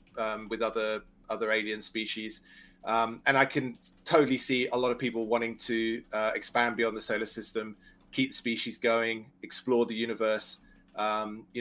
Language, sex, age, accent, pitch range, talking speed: English, male, 30-49, British, 110-135 Hz, 170 wpm